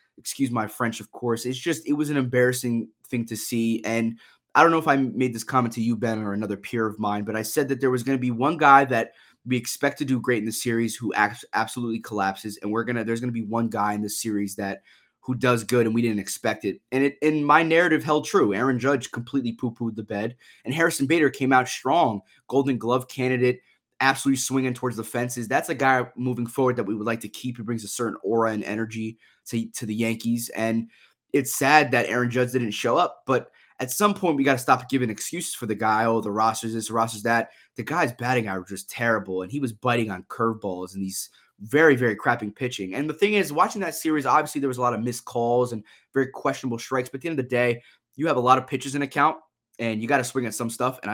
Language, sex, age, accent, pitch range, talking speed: English, male, 20-39, American, 110-135 Hz, 250 wpm